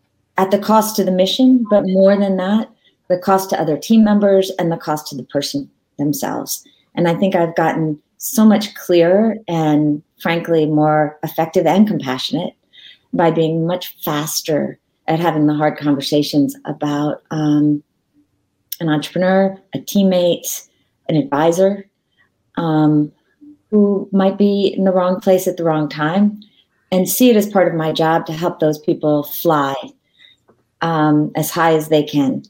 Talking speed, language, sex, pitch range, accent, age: 155 wpm, English, female, 150-200 Hz, American, 40-59